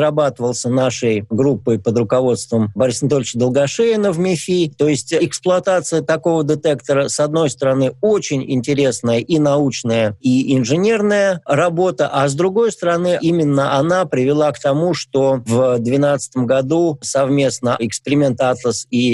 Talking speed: 125 wpm